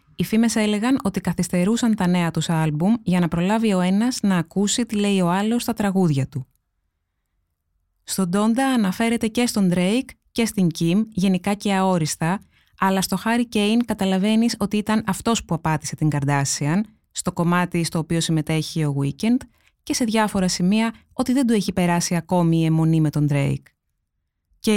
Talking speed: 170 wpm